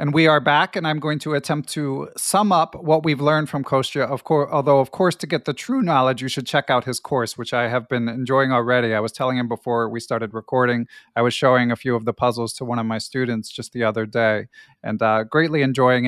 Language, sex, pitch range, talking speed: English, male, 125-150 Hz, 255 wpm